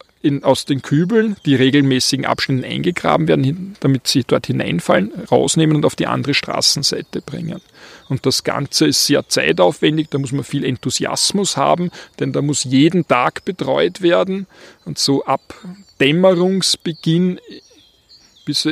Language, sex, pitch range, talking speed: German, male, 130-160 Hz, 140 wpm